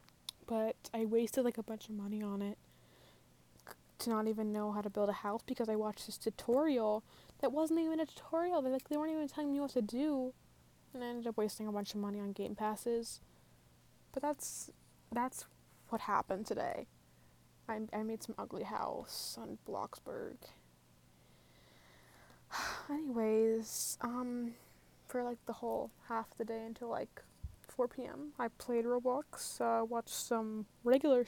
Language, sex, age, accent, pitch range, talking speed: English, female, 10-29, American, 205-250 Hz, 165 wpm